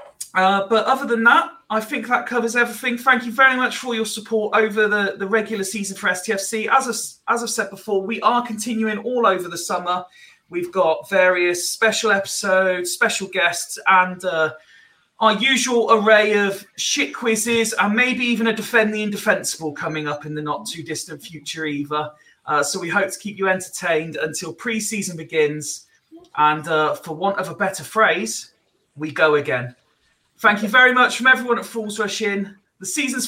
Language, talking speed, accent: English, 180 wpm, British